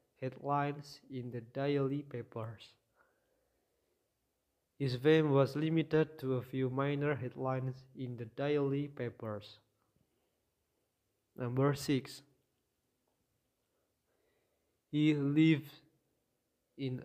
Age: 20-39